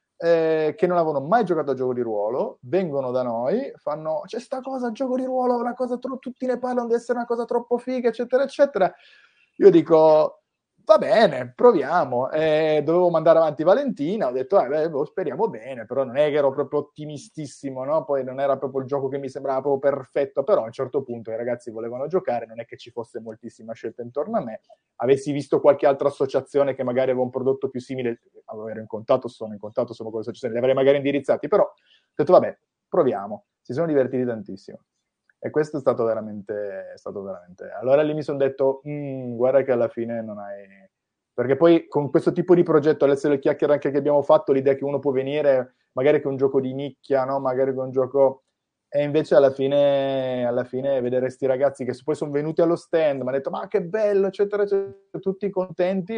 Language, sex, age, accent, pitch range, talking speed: Italian, male, 30-49, native, 130-170 Hz, 205 wpm